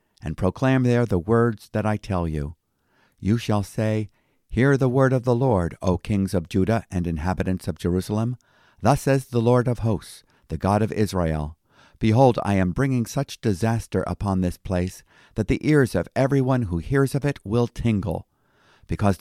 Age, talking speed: 50-69, 180 wpm